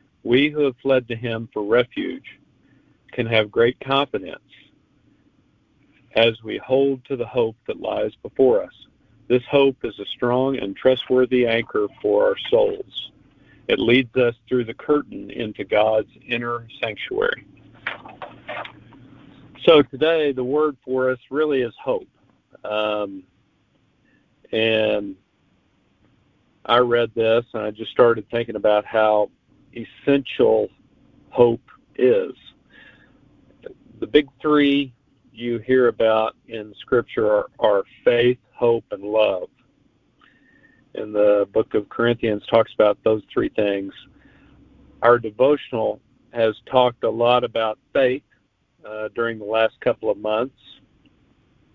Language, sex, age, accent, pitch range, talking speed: English, male, 50-69, American, 110-135 Hz, 125 wpm